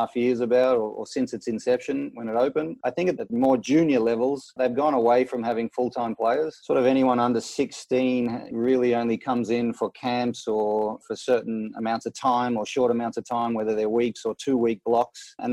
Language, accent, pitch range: English, Australian, 115-125 Hz